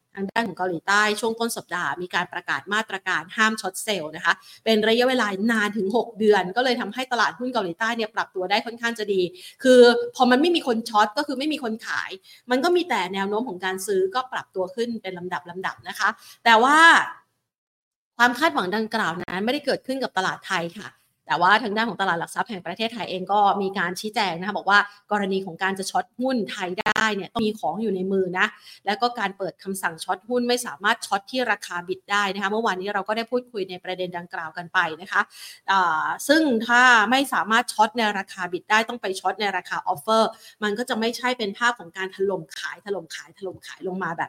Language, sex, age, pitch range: Thai, female, 30-49, 185-235 Hz